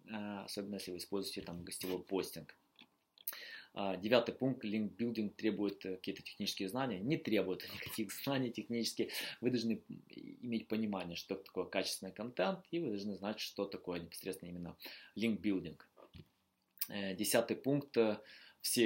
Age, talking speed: 20-39, 130 wpm